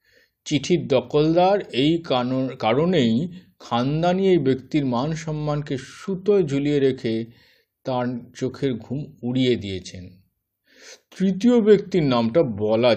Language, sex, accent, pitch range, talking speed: Bengali, male, native, 120-190 Hz, 95 wpm